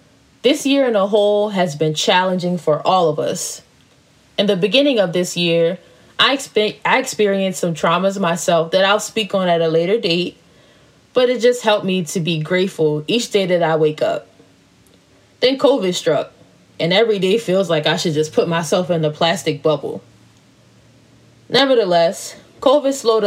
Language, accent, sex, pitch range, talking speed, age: English, American, female, 170-215 Hz, 170 wpm, 20-39